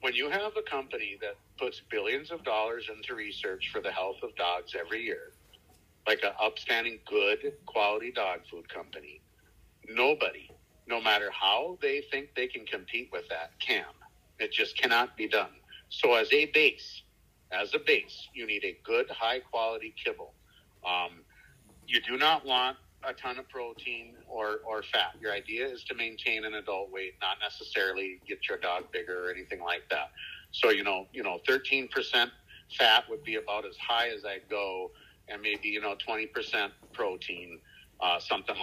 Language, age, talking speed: English, 50-69, 170 wpm